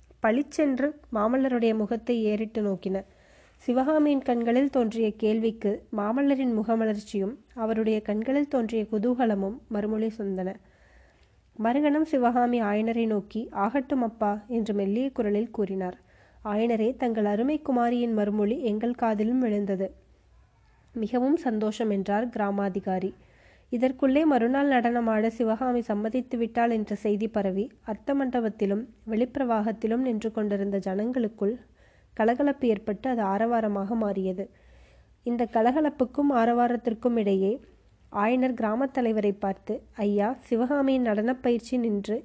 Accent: native